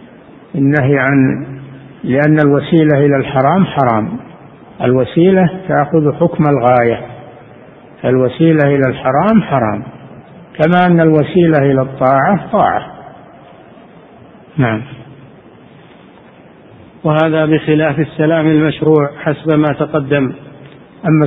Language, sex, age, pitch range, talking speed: Arabic, male, 60-79, 135-160 Hz, 85 wpm